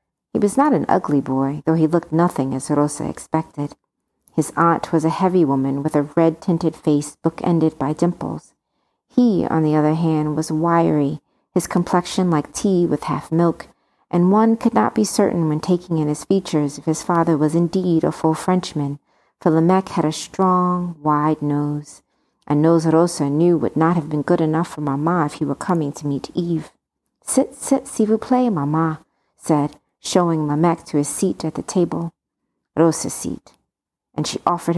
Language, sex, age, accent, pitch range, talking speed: English, female, 50-69, American, 150-175 Hz, 185 wpm